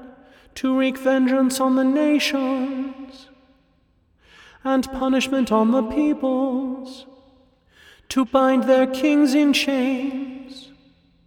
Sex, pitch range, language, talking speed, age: male, 225-265 Hz, English, 90 wpm, 30-49